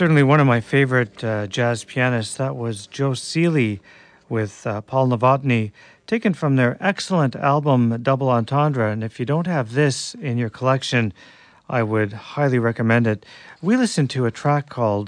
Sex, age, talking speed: male, 40-59, 170 wpm